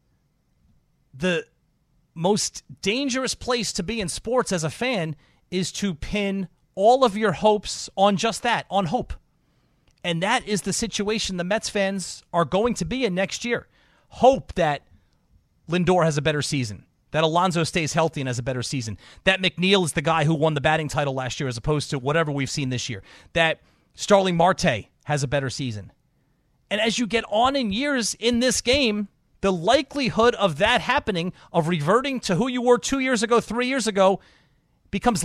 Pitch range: 160-230 Hz